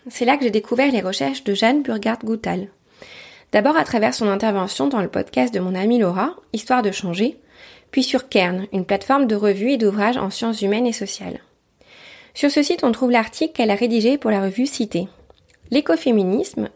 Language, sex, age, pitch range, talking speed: French, female, 20-39, 200-250 Hz, 190 wpm